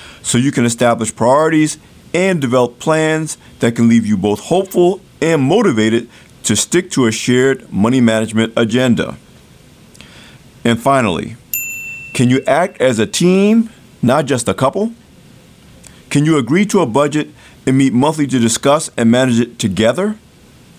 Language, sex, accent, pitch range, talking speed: English, male, American, 115-155 Hz, 145 wpm